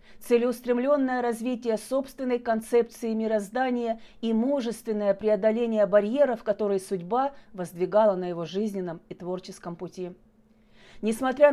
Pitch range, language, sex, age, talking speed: 200-250 Hz, Russian, female, 40-59, 100 wpm